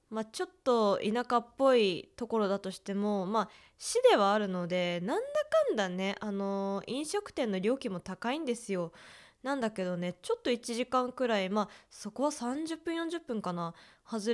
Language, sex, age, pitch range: Japanese, female, 20-39, 190-240 Hz